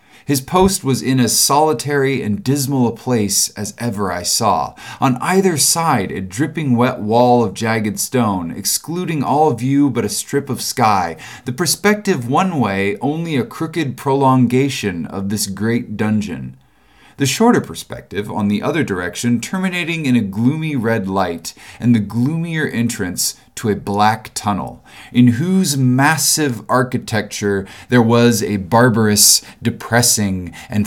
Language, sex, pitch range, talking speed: English, male, 105-150 Hz, 145 wpm